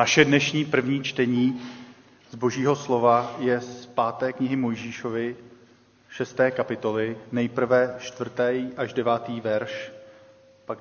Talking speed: 110 wpm